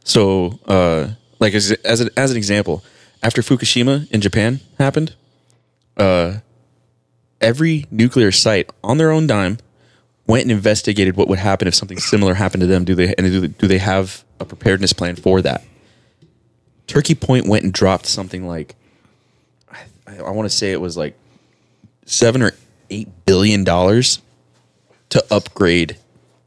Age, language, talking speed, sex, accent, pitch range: 20-39, English, 155 wpm, male, American, 90-110 Hz